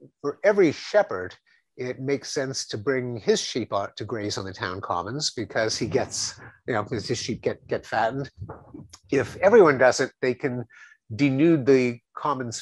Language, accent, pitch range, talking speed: English, American, 110-140 Hz, 175 wpm